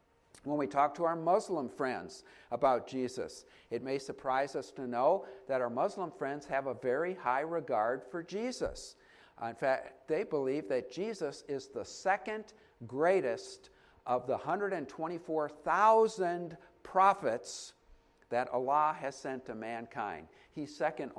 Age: 50-69